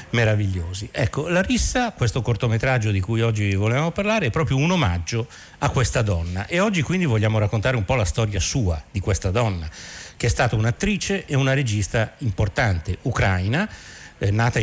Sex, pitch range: male, 110-150 Hz